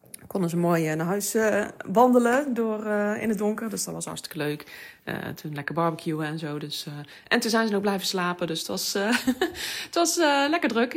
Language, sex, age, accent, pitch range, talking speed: Dutch, female, 30-49, Dutch, 170-230 Hz, 215 wpm